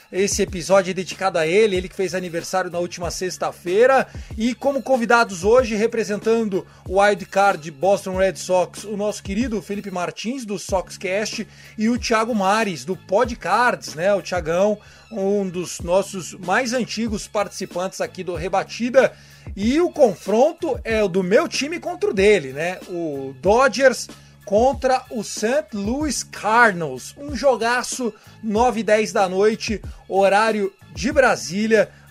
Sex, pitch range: male, 190-235 Hz